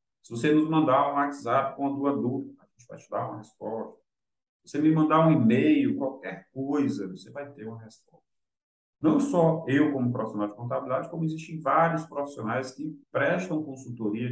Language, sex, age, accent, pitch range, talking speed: Portuguese, male, 40-59, Brazilian, 110-145 Hz, 185 wpm